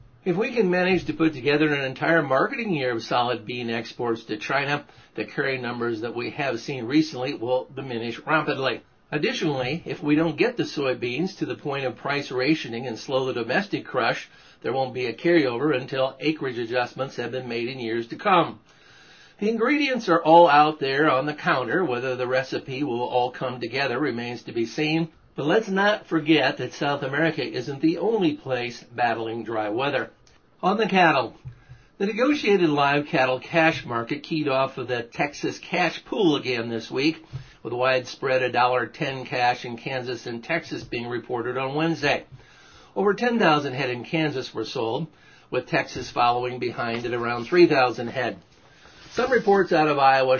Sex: male